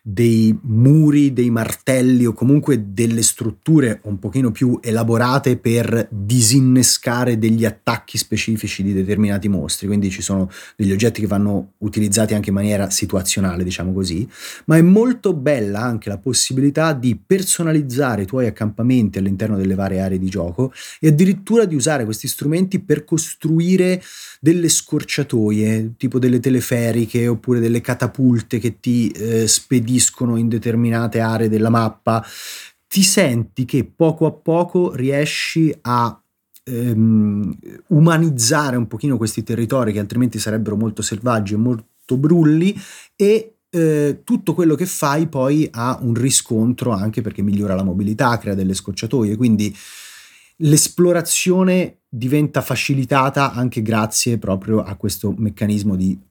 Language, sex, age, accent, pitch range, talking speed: Italian, male, 30-49, native, 110-145 Hz, 135 wpm